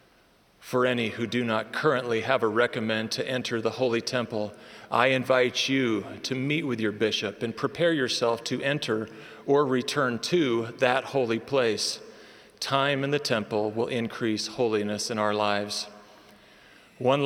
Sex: male